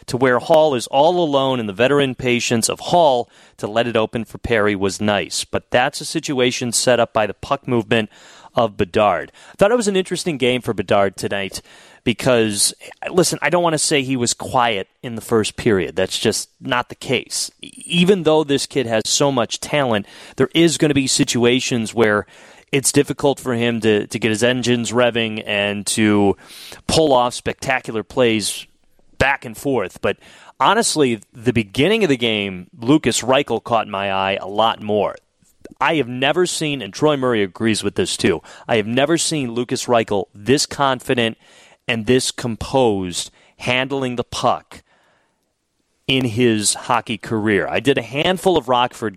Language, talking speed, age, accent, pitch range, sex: English, 175 wpm, 30-49, American, 110-140 Hz, male